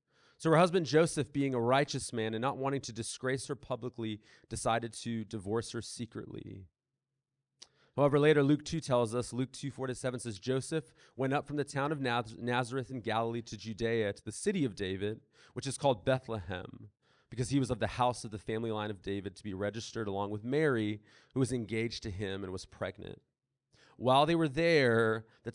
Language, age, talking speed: English, 30-49, 195 wpm